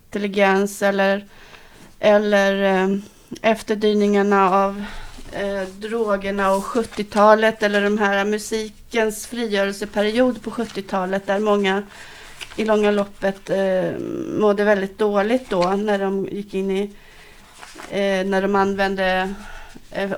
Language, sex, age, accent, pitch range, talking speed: English, female, 30-49, Swedish, 190-215 Hz, 105 wpm